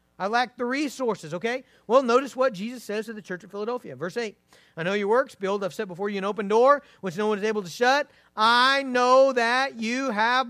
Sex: male